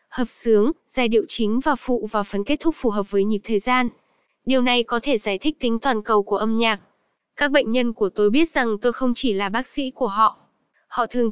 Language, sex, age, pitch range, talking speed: Vietnamese, female, 10-29, 220-270 Hz, 245 wpm